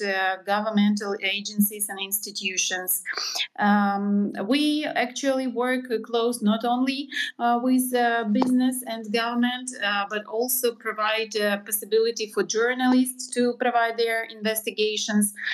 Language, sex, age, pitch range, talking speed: English, female, 30-49, 210-245 Hz, 110 wpm